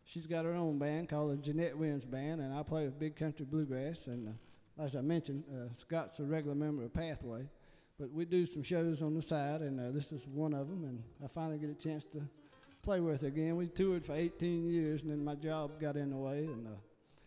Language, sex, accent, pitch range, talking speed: English, male, American, 140-160 Hz, 245 wpm